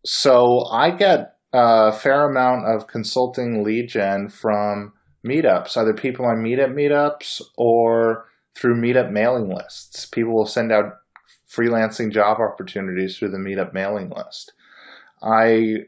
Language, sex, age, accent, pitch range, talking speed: English, male, 20-39, American, 105-125 Hz, 130 wpm